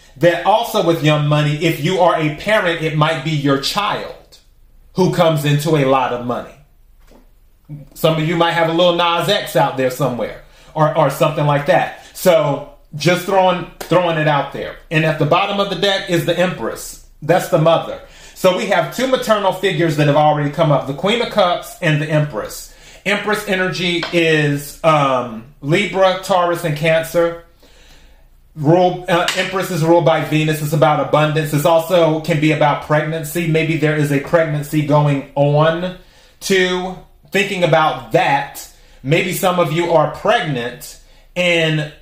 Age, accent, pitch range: 30-49, American, 150-180 Hz